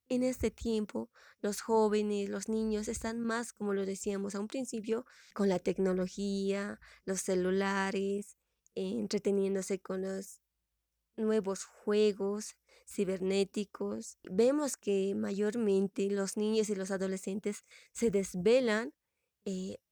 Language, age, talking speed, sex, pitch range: Spanish, 20-39, 115 wpm, female, 195-225 Hz